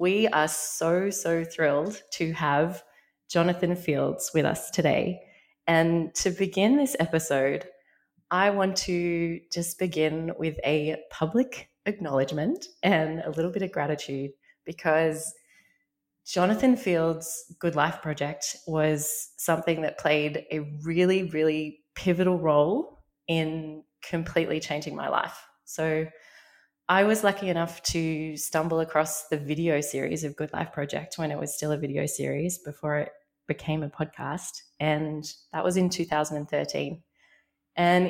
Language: English